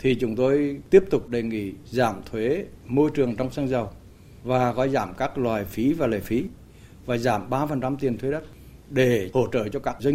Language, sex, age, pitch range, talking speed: Vietnamese, male, 60-79, 115-145 Hz, 205 wpm